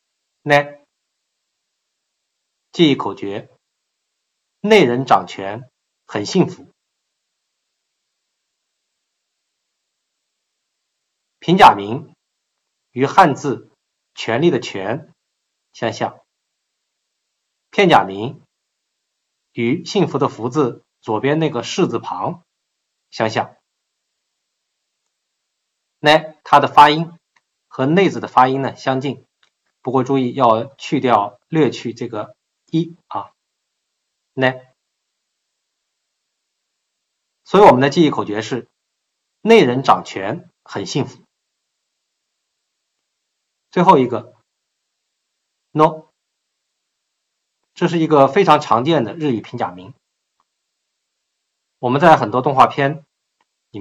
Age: 50-69